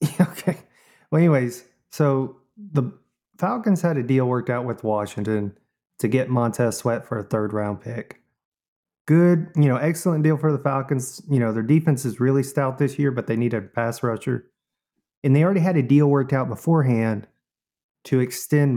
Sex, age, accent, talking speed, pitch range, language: male, 30-49, American, 180 wpm, 115-160 Hz, English